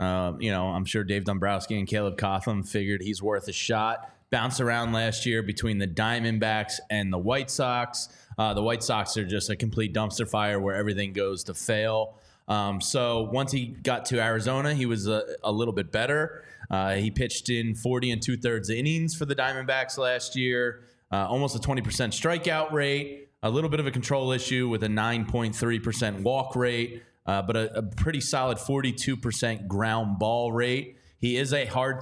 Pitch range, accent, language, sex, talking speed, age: 105-125 Hz, American, English, male, 185 wpm, 20-39